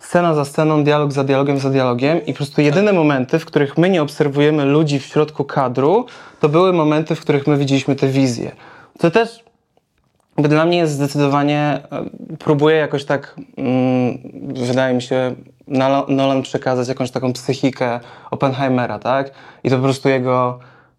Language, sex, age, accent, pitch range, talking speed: Polish, male, 20-39, native, 130-155 Hz, 165 wpm